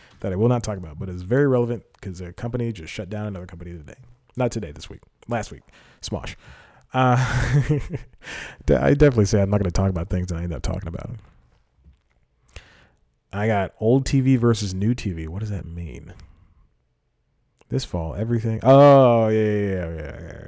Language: English